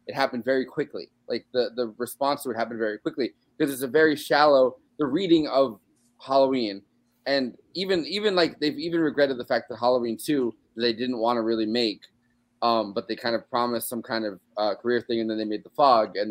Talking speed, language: 215 wpm, English